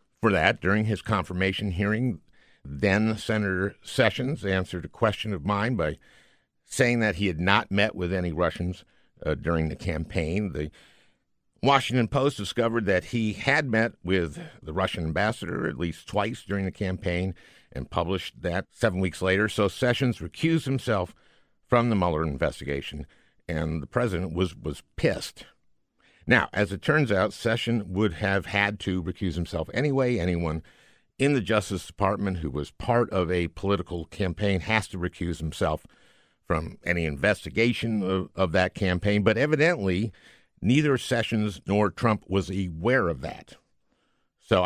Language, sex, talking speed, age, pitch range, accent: English, male, 150 wpm, 50-69, 90-110 Hz, American